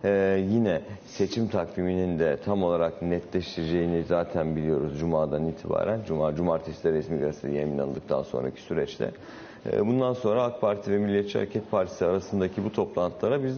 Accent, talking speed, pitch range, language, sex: native, 145 wpm, 90-105 Hz, Turkish, male